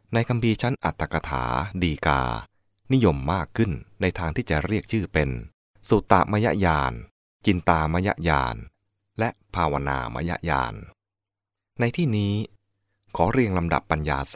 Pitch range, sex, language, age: 75-100 Hz, male, English, 20-39